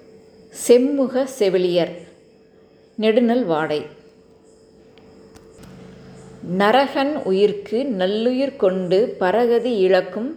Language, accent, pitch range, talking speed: Tamil, native, 190-255 Hz, 60 wpm